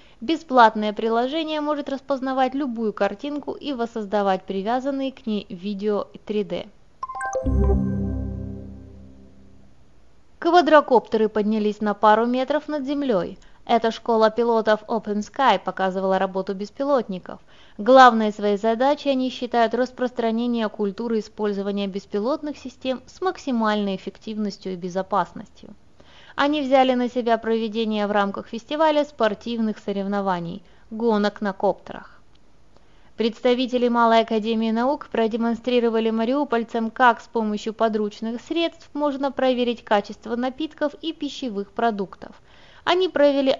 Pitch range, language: 205-260 Hz, Russian